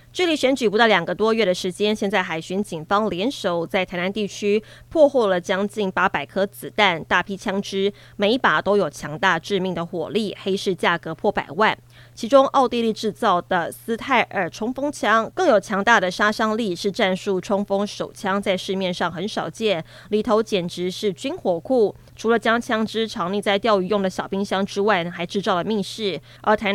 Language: Chinese